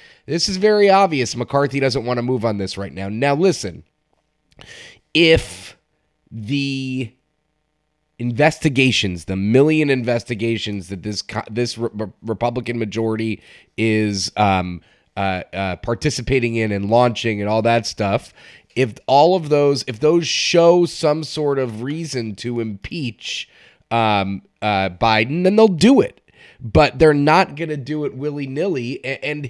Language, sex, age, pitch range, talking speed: English, male, 30-49, 115-155 Hz, 135 wpm